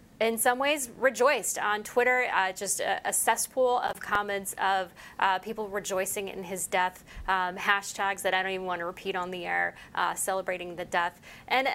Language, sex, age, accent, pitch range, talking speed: English, female, 20-39, American, 190-250 Hz, 190 wpm